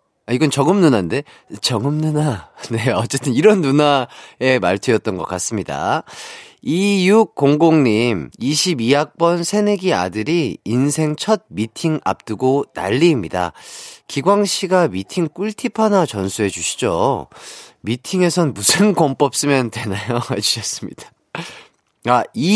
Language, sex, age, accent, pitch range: Korean, male, 30-49, native, 110-180 Hz